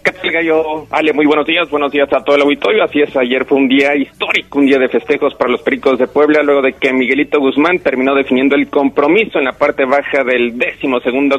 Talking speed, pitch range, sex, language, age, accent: 230 wpm, 135-165 Hz, male, Spanish, 40-59, Mexican